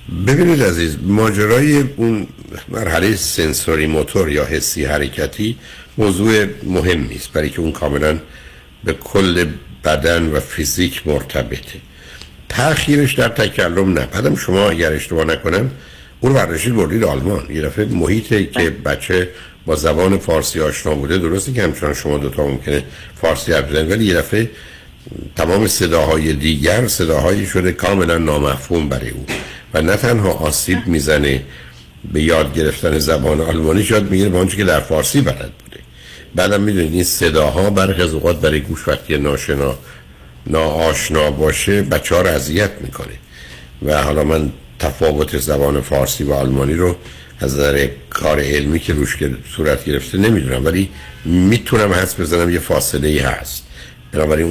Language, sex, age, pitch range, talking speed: Persian, male, 60-79, 70-90 Hz, 140 wpm